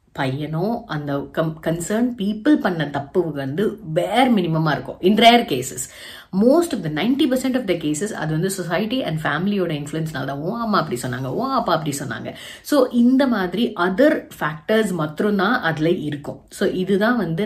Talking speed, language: 160 wpm, Tamil